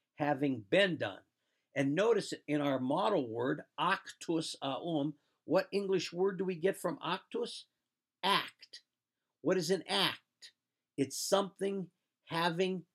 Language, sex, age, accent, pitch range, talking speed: English, male, 50-69, American, 140-180 Hz, 130 wpm